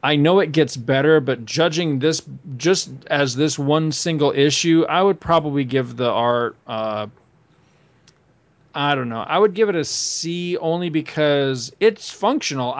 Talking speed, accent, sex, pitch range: 160 wpm, American, male, 130-165 Hz